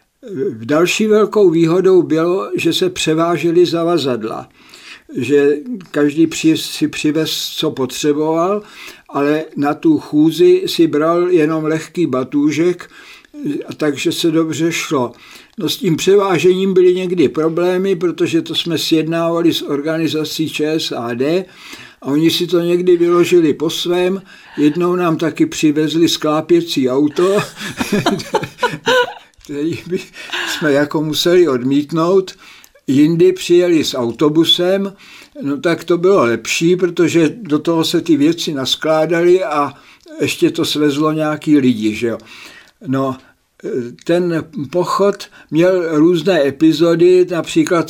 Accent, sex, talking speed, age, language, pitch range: native, male, 115 wpm, 60-79, Czech, 150-180 Hz